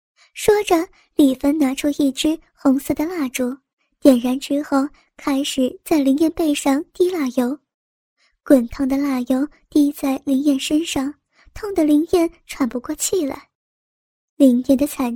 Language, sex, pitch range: Chinese, male, 270-320 Hz